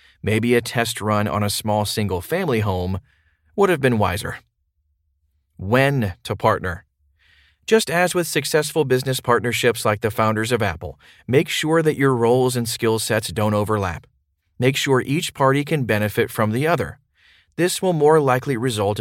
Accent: American